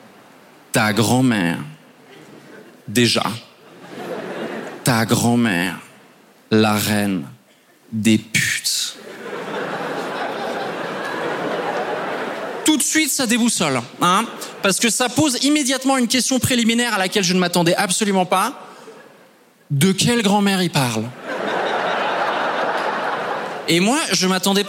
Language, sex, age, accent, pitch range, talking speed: French, male, 30-49, French, 150-240 Hz, 95 wpm